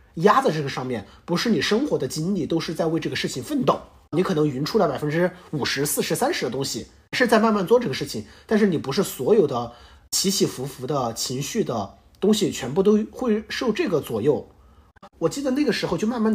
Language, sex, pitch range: Chinese, male, 150-225 Hz